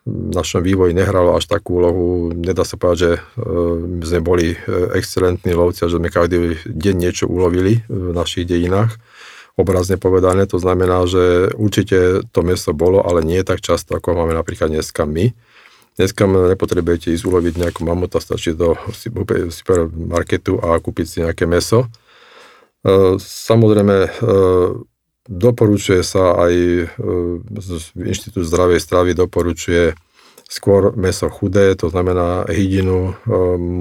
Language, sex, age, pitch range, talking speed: Slovak, male, 50-69, 85-100 Hz, 130 wpm